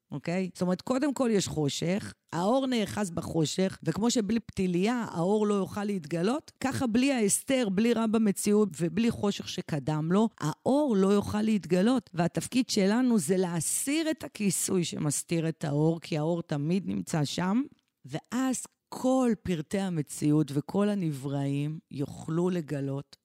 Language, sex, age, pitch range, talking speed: Hebrew, female, 30-49, 145-205 Hz, 140 wpm